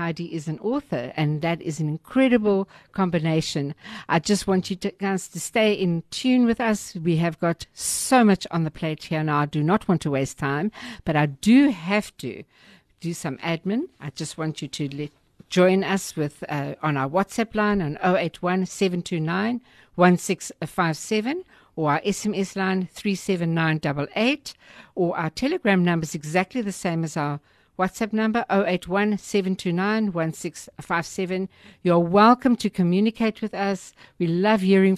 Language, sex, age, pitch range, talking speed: English, female, 60-79, 165-205 Hz, 155 wpm